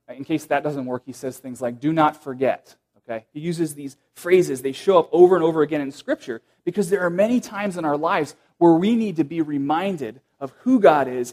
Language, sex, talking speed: English, male, 235 wpm